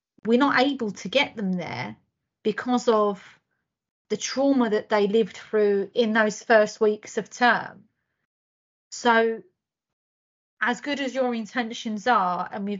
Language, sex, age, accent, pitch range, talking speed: English, female, 30-49, British, 200-230 Hz, 140 wpm